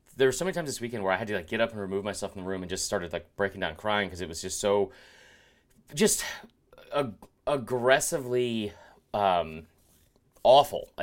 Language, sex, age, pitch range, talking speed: English, male, 30-49, 95-120 Hz, 200 wpm